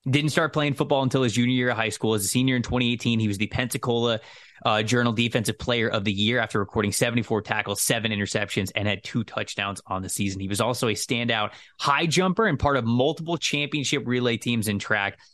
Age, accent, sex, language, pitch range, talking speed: 20-39, American, male, English, 105-135 Hz, 220 wpm